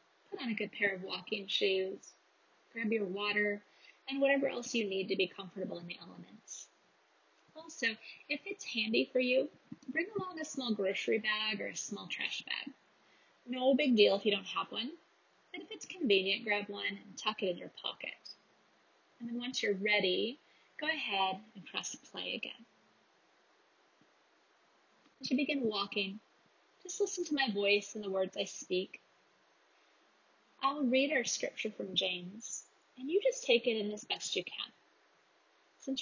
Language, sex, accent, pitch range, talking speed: English, female, American, 195-265 Hz, 170 wpm